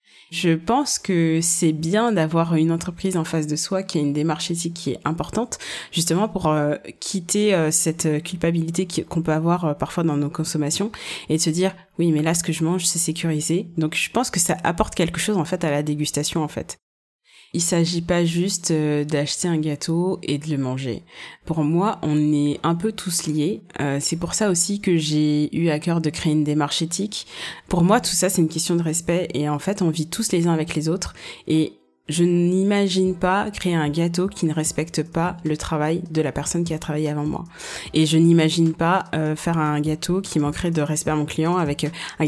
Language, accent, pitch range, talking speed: French, French, 155-175 Hz, 220 wpm